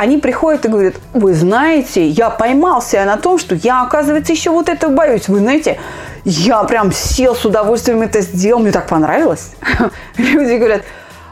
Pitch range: 210-305 Hz